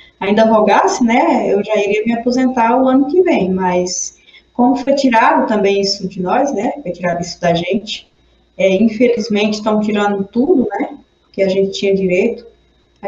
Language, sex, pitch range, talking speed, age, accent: Portuguese, female, 190-270 Hz, 175 wpm, 20-39, Brazilian